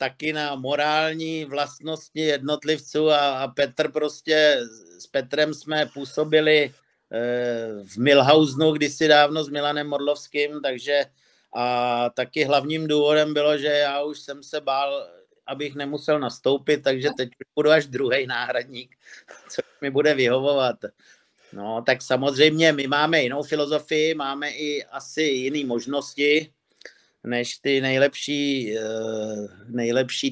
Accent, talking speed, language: native, 125 wpm, Czech